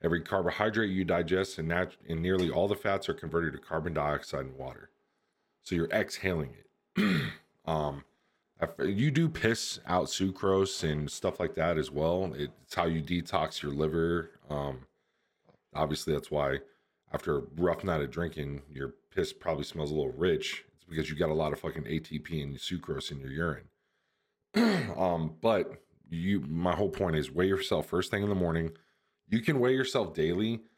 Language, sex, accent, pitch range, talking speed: English, male, American, 75-95 Hz, 180 wpm